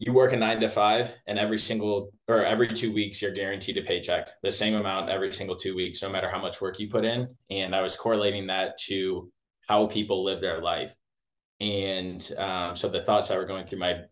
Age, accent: 20-39, American